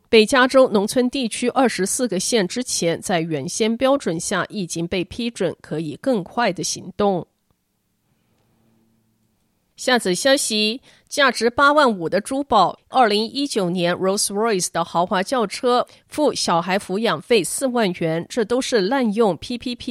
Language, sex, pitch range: Chinese, female, 180-235 Hz